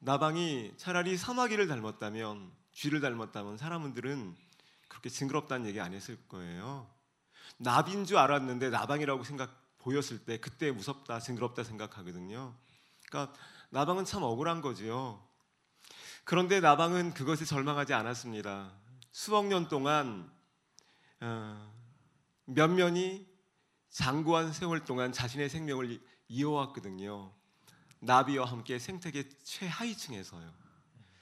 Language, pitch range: Korean, 115-160 Hz